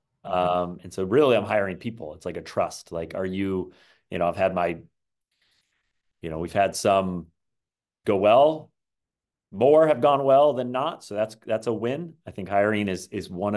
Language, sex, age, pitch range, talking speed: English, male, 30-49, 90-110 Hz, 190 wpm